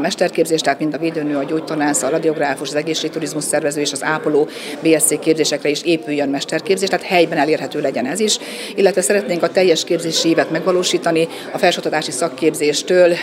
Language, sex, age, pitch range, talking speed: Hungarian, female, 40-59, 145-170 Hz, 165 wpm